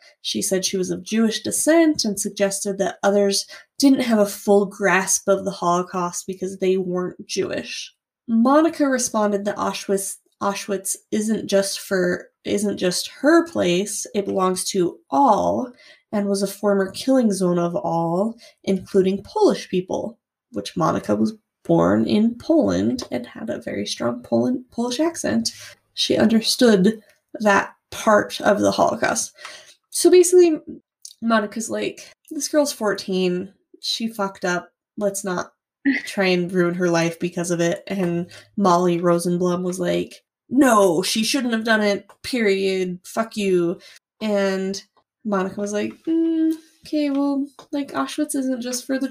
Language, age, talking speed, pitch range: English, 20-39, 145 wpm, 185-255 Hz